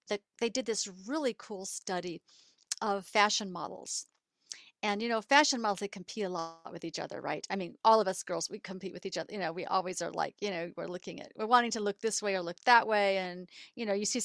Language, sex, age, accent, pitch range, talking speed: English, female, 50-69, American, 185-225 Hz, 255 wpm